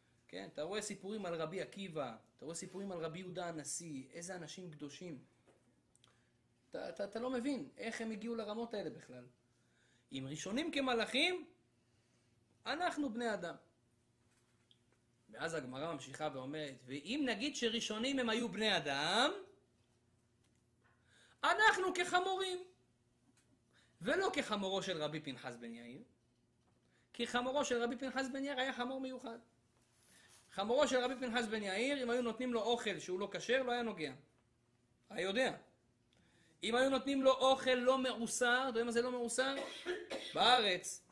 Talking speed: 140 wpm